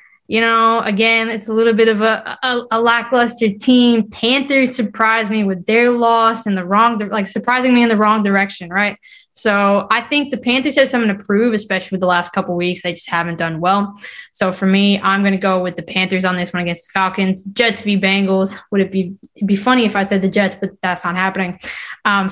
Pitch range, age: 190-215 Hz, 20-39